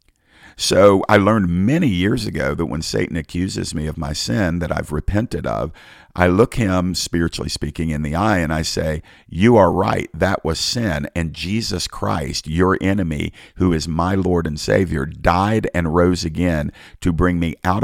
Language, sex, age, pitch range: English, male, 50-69, 75-90 Hz